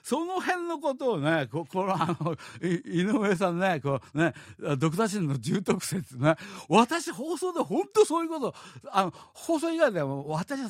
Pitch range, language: 125-190 Hz, Japanese